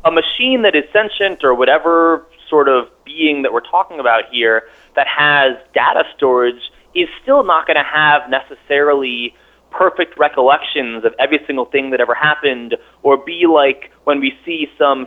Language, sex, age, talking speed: English, male, 20-39, 165 wpm